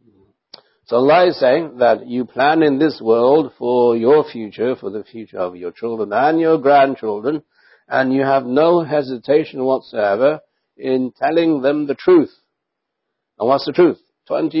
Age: 60-79